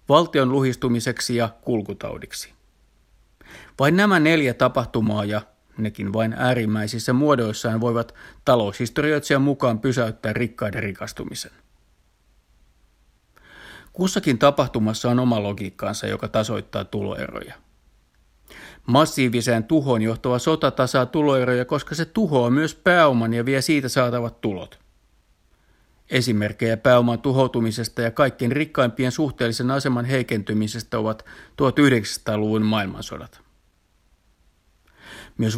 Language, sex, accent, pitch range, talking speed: Finnish, male, native, 105-130 Hz, 95 wpm